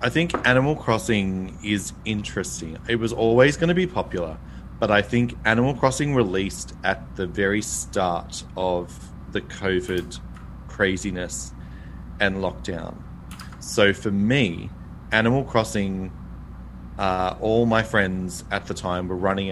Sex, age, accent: male, 30-49, Australian